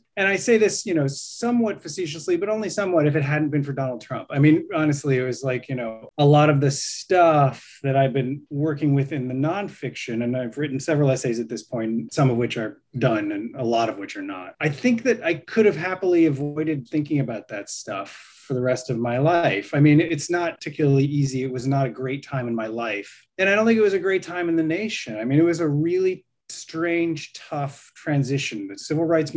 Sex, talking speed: male, 235 wpm